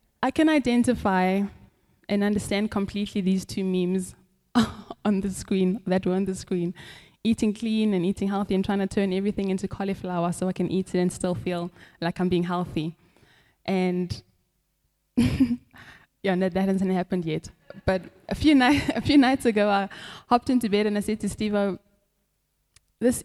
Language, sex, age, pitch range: English, female, 10-29, 185-220 Hz